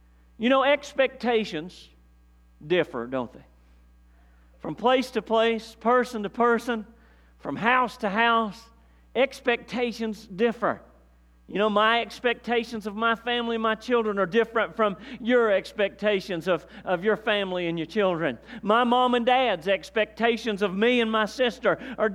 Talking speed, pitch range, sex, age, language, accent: 140 wpm, 205-255 Hz, male, 40-59, English, American